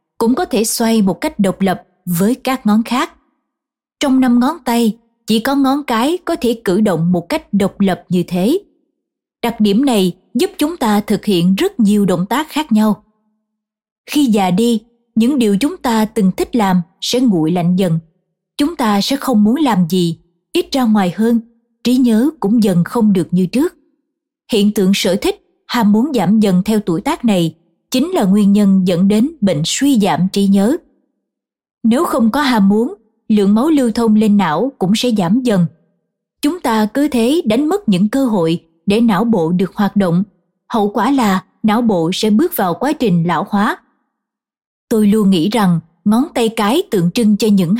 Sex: female